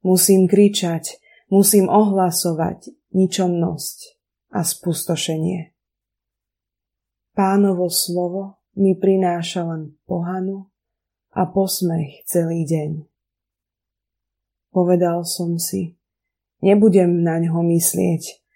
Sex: female